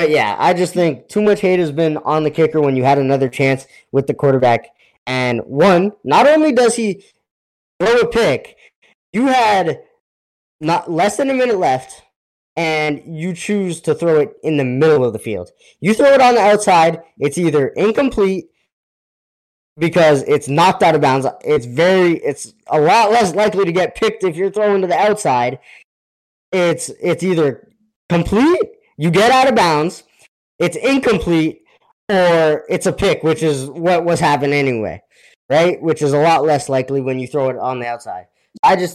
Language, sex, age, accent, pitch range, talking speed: English, male, 10-29, American, 135-190 Hz, 180 wpm